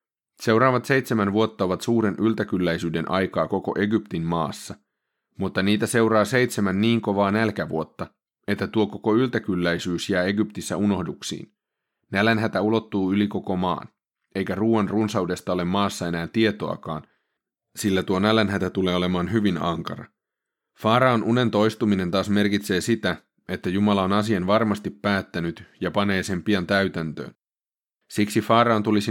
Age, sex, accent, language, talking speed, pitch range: 30-49, male, native, Finnish, 130 wpm, 95-110 Hz